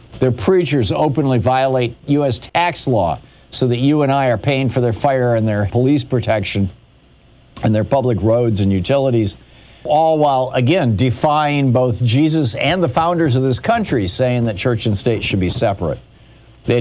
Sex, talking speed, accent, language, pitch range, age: male, 170 wpm, American, English, 115-155 Hz, 50-69